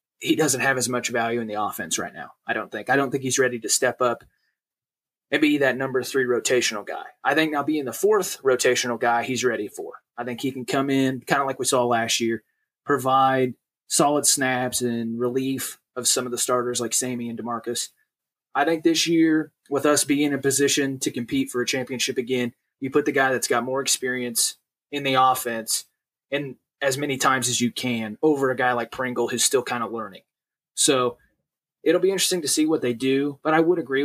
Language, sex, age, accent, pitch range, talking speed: English, male, 20-39, American, 120-145 Hz, 220 wpm